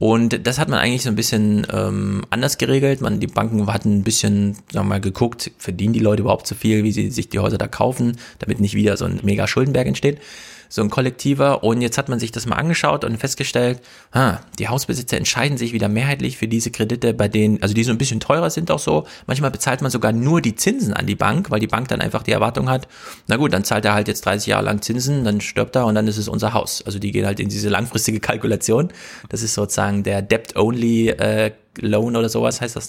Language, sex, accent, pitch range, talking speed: German, male, German, 105-130 Hz, 240 wpm